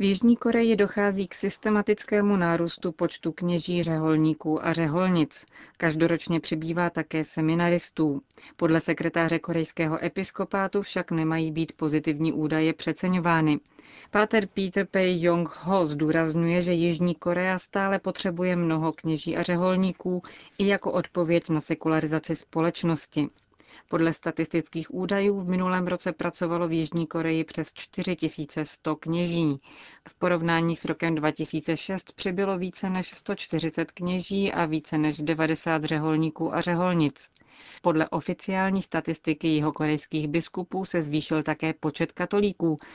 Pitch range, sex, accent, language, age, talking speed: 160-185 Hz, female, native, Czech, 30-49, 120 wpm